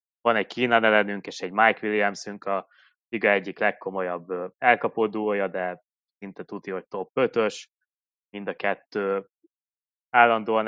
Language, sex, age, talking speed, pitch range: Hungarian, male, 20-39, 130 wpm, 95-105 Hz